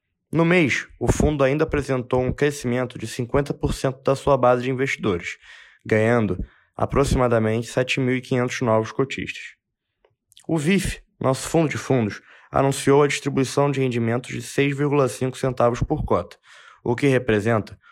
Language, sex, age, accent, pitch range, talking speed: Portuguese, male, 20-39, Brazilian, 110-140 Hz, 130 wpm